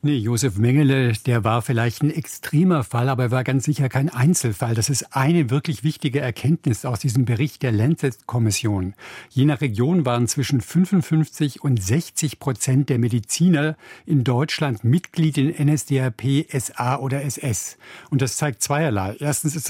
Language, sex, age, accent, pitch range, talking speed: German, male, 60-79, German, 125-155 Hz, 160 wpm